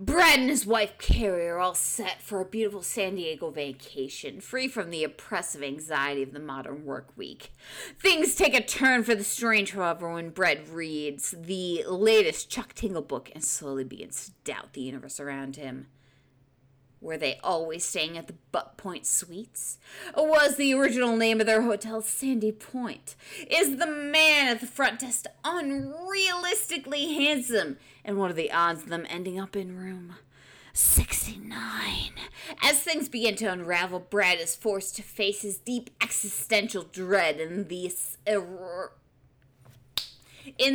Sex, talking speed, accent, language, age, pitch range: female, 155 wpm, American, English, 30-49, 155-245 Hz